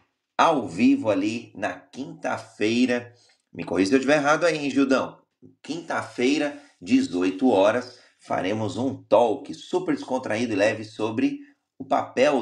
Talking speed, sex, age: 130 wpm, male, 30-49